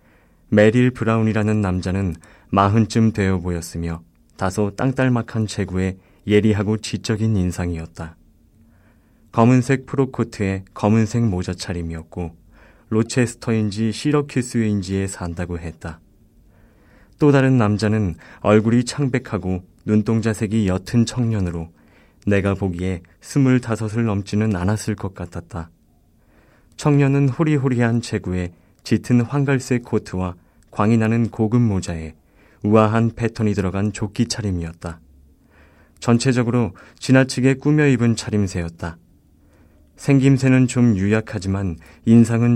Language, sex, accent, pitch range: Korean, male, native, 90-115 Hz